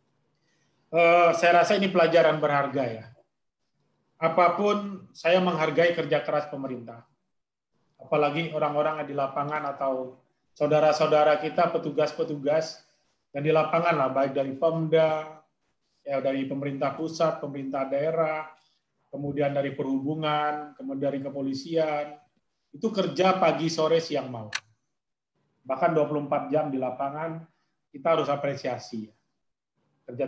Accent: native